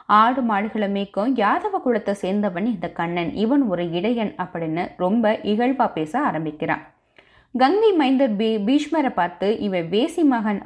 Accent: native